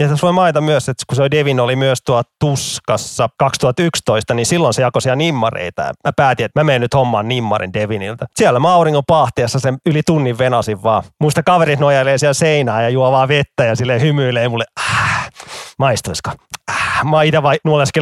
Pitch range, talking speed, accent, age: 120-155 Hz, 185 wpm, native, 30-49